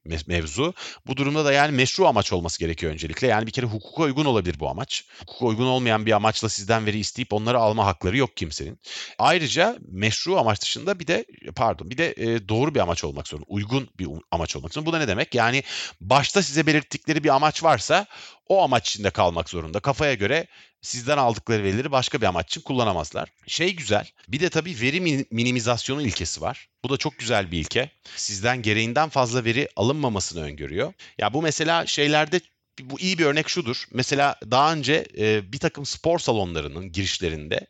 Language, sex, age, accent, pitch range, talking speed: Turkish, male, 40-59, native, 100-140 Hz, 180 wpm